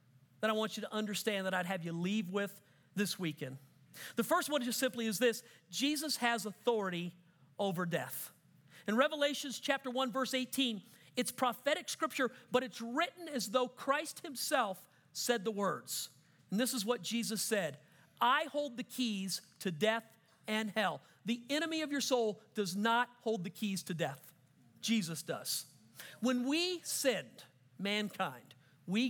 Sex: male